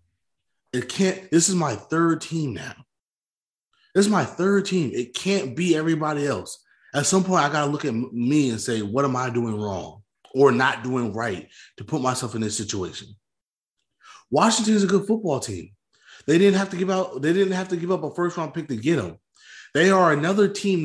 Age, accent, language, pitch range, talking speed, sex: 20-39, American, English, 135-190 Hz, 205 wpm, male